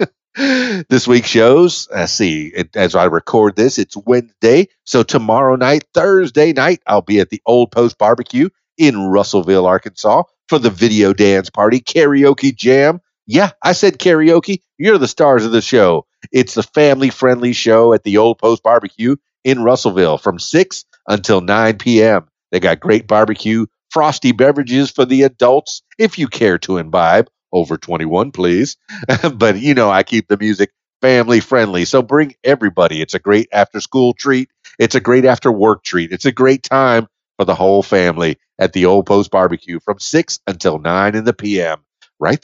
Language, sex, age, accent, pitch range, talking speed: English, male, 50-69, American, 105-150 Hz, 170 wpm